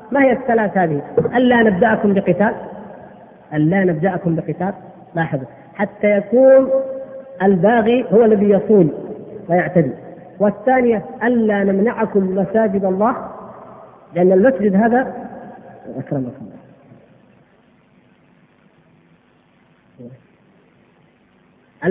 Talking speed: 75 wpm